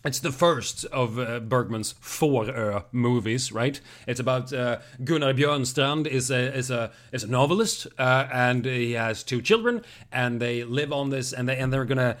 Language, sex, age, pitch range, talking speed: Swedish, male, 30-49, 125-155 Hz, 185 wpm